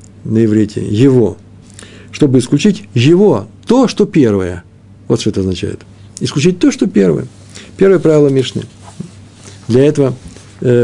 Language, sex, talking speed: Russian, male, 125 wpm